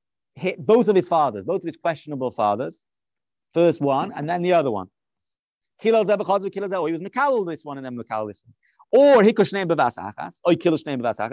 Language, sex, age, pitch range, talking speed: English, male, 30-49, 135-185 Hz, 170 wpm